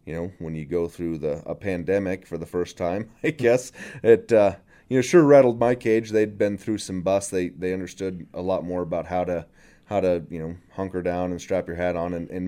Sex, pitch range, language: male, 85-100 Hz, English